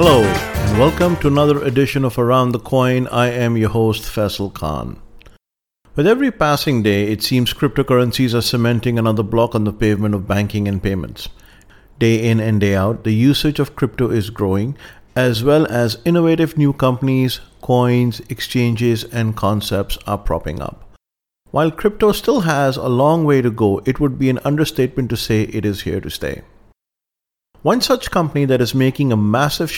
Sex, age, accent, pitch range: male, 50-69, Indian, 105-140 Hz